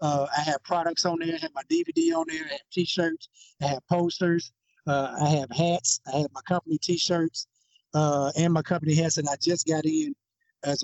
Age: 50-69